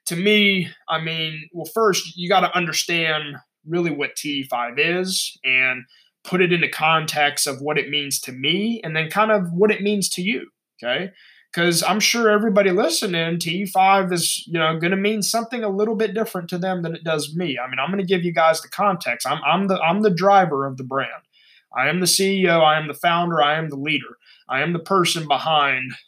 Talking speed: 220 wpm